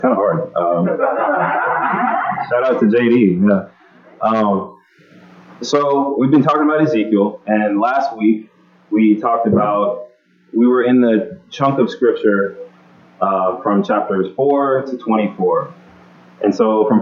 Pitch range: 95-120 Hz